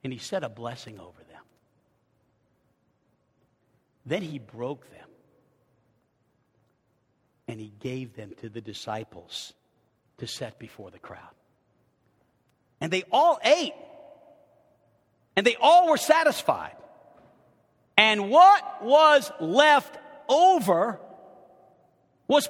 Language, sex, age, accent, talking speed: English, male, 50-69, American, 100 wpm